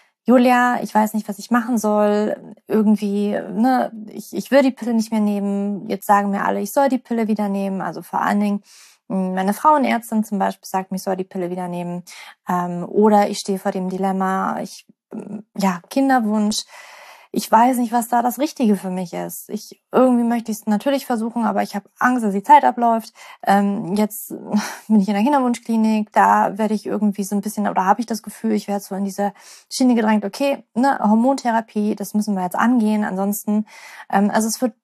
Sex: female